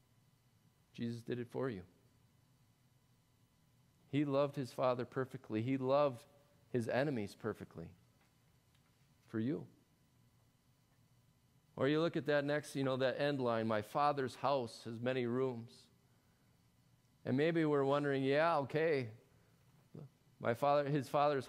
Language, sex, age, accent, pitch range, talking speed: English, male, 40-59, American, 120-140 Hz, 125 wpm